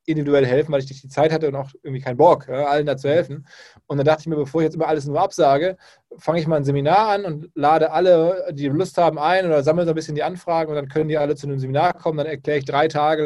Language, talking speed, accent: German, 285 wpm, German